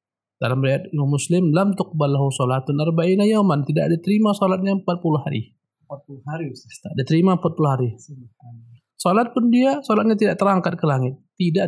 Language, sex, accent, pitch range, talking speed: Indonesian, male, native, 140-200 Hz, 115 wpm